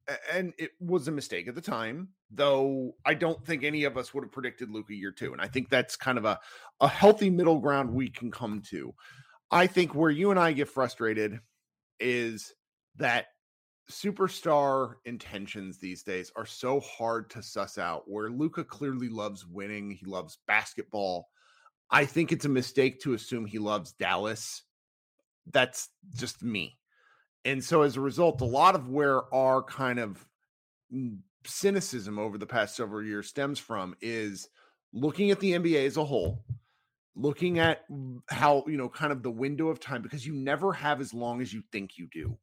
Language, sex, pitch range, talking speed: English, male, 115-150 Hz, 180 wpm